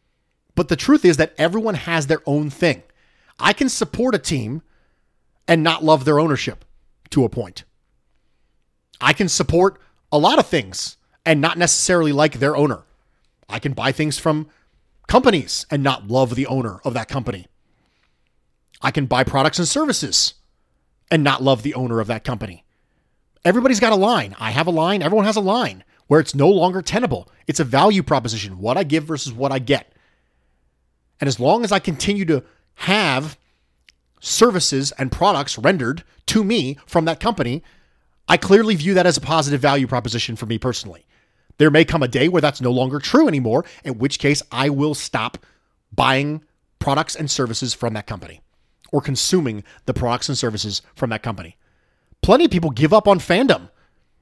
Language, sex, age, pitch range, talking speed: English, male, 30-49, 120-165 Hz, 180 wpm